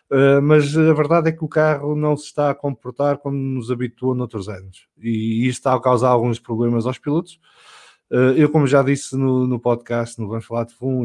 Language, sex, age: English, male, 20-39